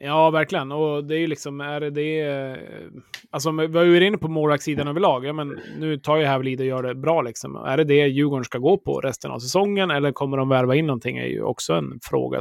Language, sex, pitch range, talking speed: Swedish, male, 130-145 Hz, 230 wpm